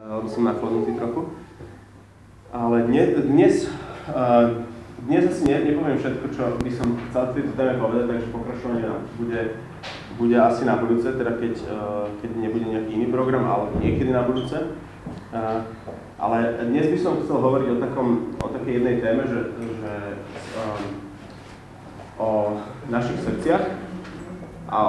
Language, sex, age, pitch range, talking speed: Slovak, male, 20-39, 105-125 Hz, 135 wpm